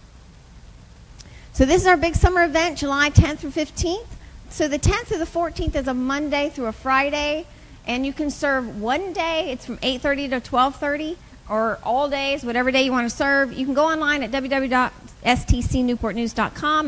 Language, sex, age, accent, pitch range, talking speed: English, female, 40-59, American, 230-290 Hz, 175 wpm